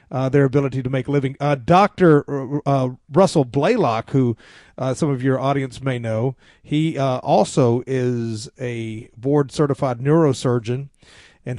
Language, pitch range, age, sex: English, 130-165 Hz, 40-59, male